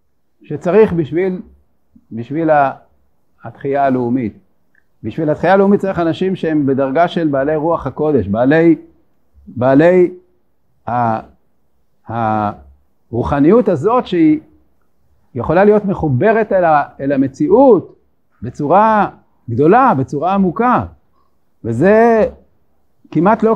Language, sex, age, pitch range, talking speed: Hebrew, male, 50-69, 135-195 Hz, 85 wpm